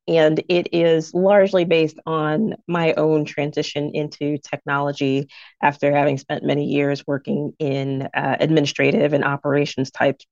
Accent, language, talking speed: American, English, 135 wpm